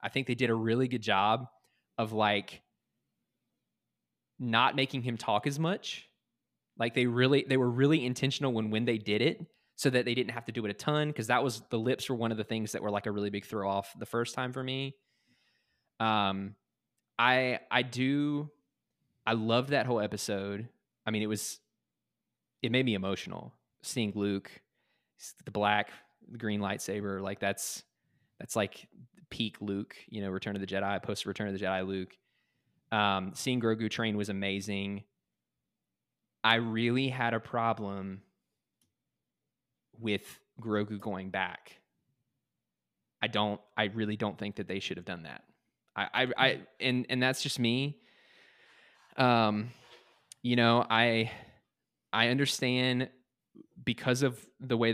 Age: 20-39